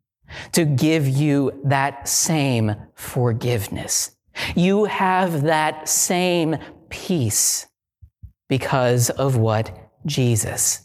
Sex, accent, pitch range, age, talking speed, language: male, American, 130-185 Hz, 40-59, 85 wpm, English